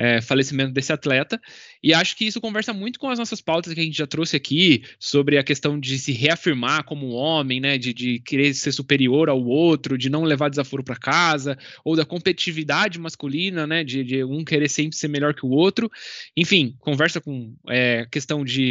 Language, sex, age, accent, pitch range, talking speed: Portuguese, male, 20-39, Brazilian, 135-170 Hz, 200 wpm